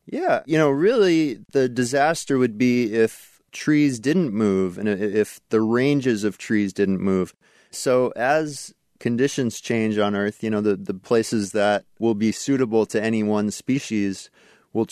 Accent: American